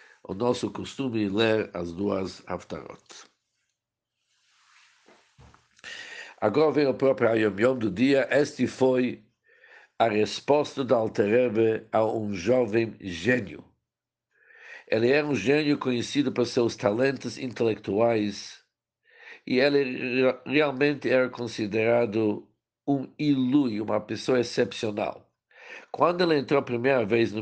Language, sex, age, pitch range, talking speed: Portuguese, male, 60-79, 110-130 Hz, 115 wpm